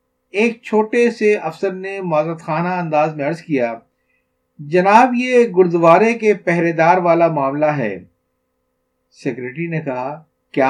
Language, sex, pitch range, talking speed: Urdu, male, 135-195 Hz, 135 wpm